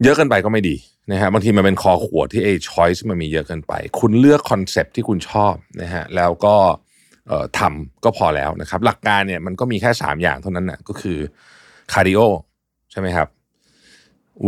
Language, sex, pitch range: Thai, male, 85-115 Hz